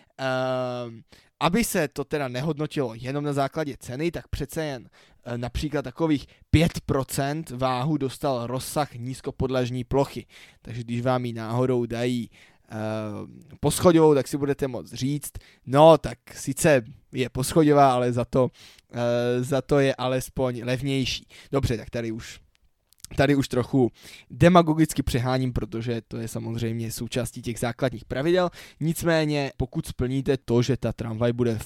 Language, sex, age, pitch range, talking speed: Czech, male, 20-39, 120-140 Hz, 140 wpm